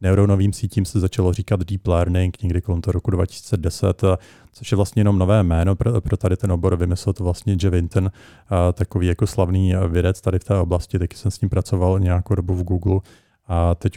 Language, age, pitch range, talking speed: Czech, 40-59, 95-110 Hz, 195 wpm